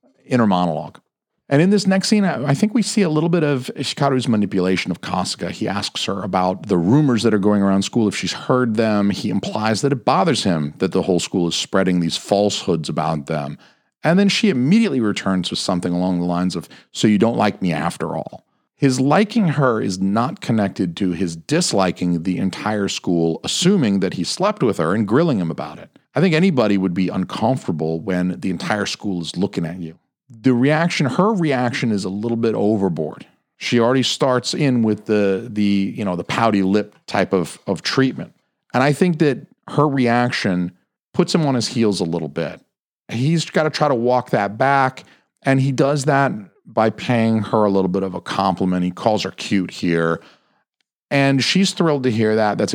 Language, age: English, 40-59